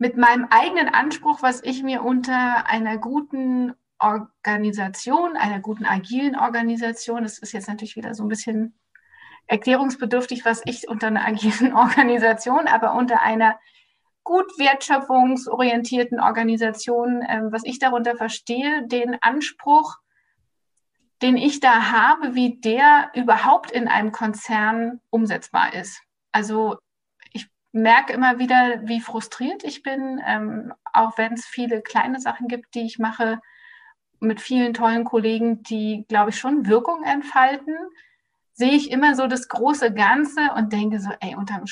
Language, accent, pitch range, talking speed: German, German, 220-260 Hz, 135 wpm